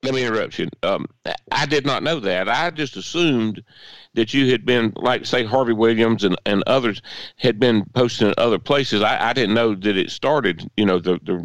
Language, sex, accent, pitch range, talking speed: English, male, American, 95-125 Hz, 215 wpm